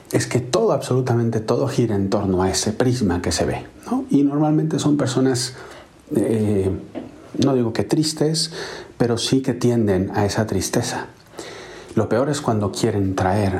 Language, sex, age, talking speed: Spanish, male, 40-59, 165 wpm